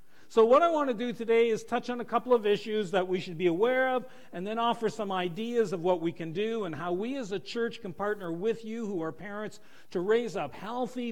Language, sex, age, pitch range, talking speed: English, male, 50-69, 175-225 Hz, 255 wpm